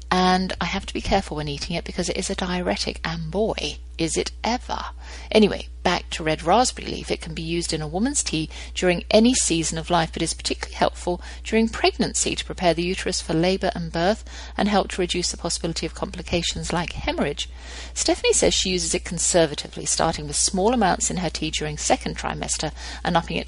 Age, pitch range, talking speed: 50-69, 160-215 Hz, 205 wpm